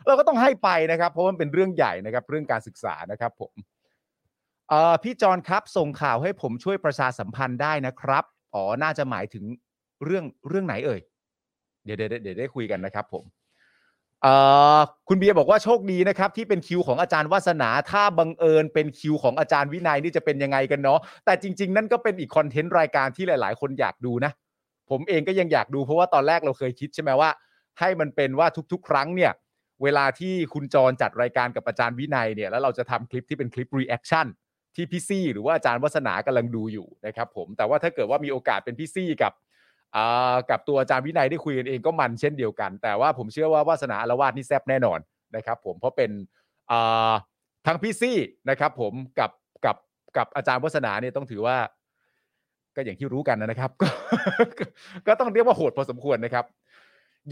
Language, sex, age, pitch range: Thai, male, 30-49, 125-175 Hz